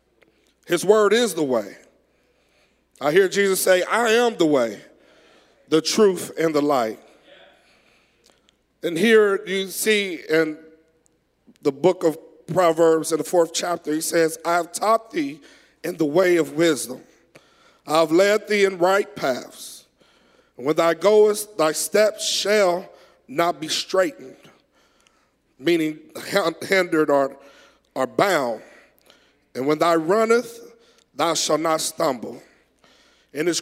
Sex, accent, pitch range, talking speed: male, American, 160-210 Hz, 135 wpm